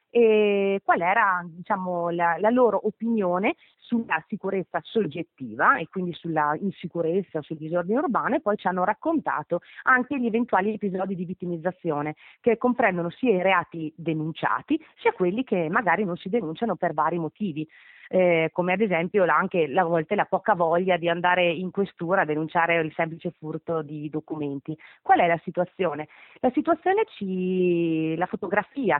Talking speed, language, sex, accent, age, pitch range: 155 wpm, Italian, female, native, 30-49, 170-215 Hz